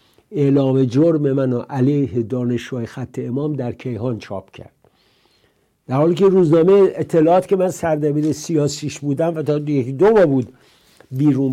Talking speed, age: 145 wpm, 60-79